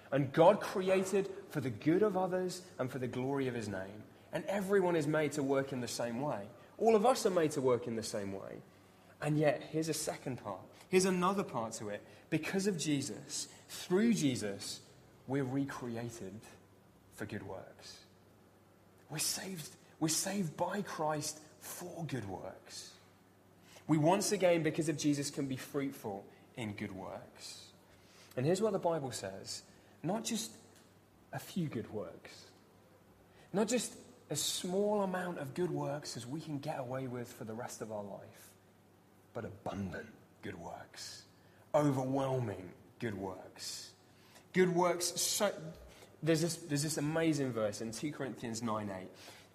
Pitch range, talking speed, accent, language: 100-160 Hz, 155 wpm, British, English